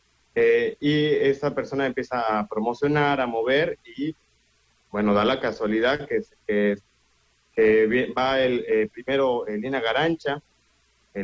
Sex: male